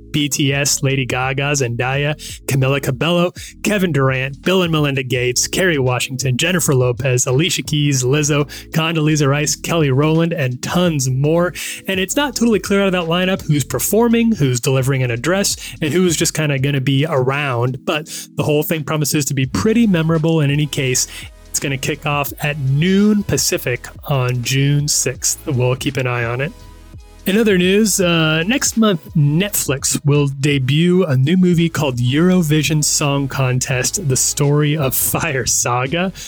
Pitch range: 135-175 Hz